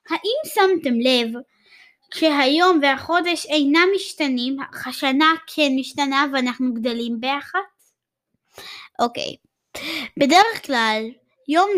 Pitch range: 245-335 Hz